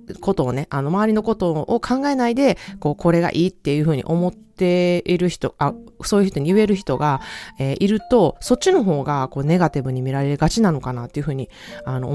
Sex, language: female, Japanese